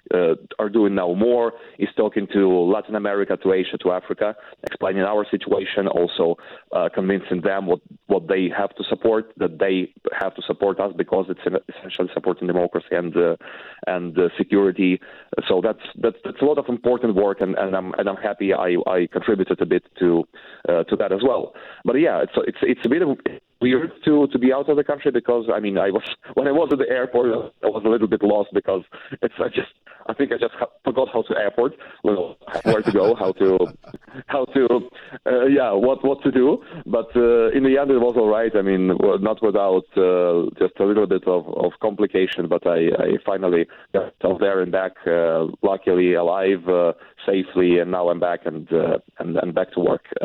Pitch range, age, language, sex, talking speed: 90-115 Hz, 30-49, English, male, 210 wpm